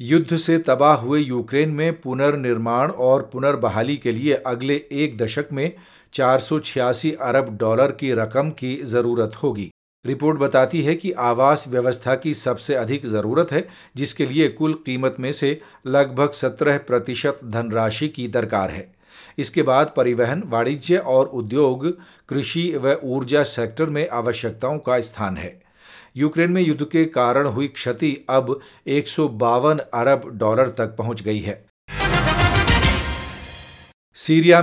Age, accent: 40-59, native